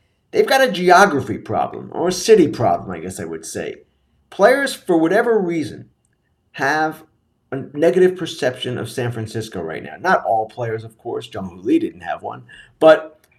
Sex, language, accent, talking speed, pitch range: male, English, American, 170 wpm, 120-175 Hz